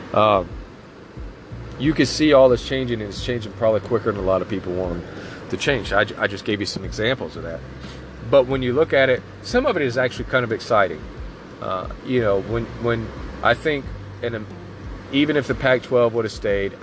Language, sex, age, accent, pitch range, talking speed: English, male, 30-49, American, 95-120 Hz, 210 wpm